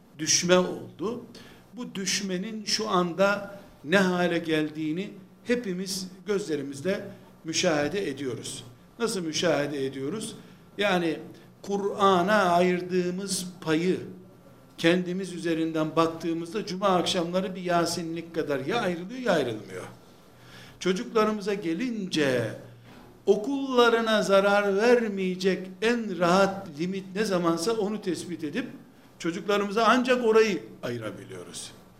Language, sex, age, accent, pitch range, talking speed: Turkish, male, 60-79, native, 155-200 Hz, 90 wpm